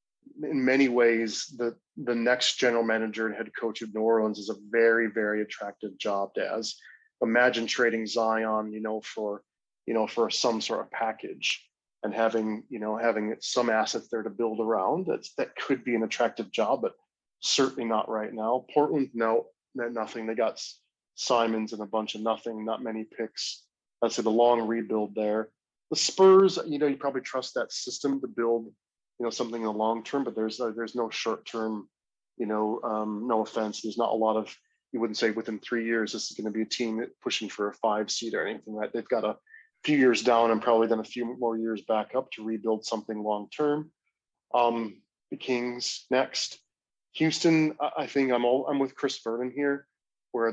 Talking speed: 200 wpm